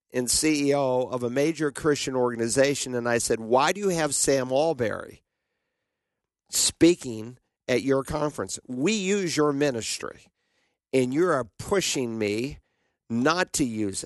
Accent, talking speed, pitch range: American, 135 wpm, 130-155 Hz